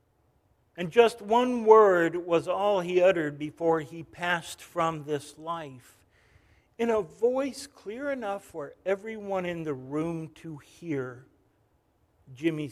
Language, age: English, 60-79